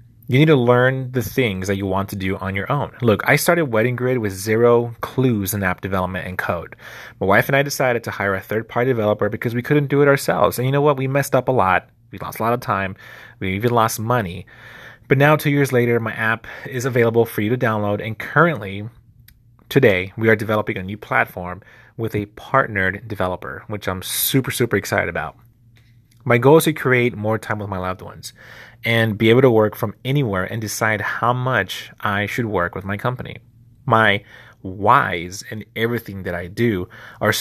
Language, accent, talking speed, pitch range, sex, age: English, American, 210 wpm, 100-125 Hz, male, 30-49